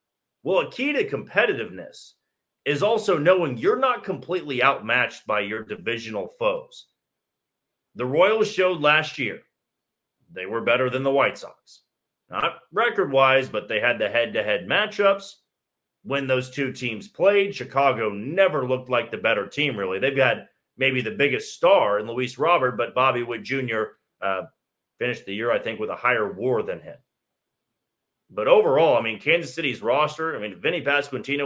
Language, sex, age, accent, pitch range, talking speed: English, male, 40-59, American, 130-185 Hz, 160 wpm